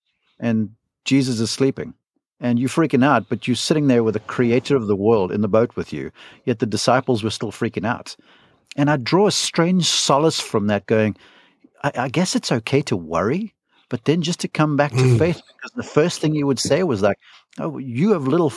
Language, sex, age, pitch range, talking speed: English, male, 50-69, 110-140 Hz, 220 wpm